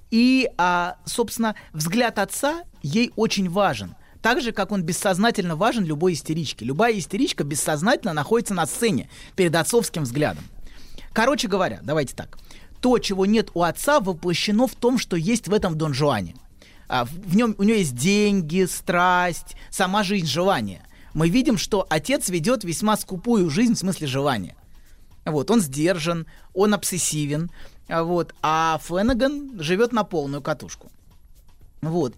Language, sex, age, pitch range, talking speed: Russian, male, 30-49, 155-215 Hz, 140 wpm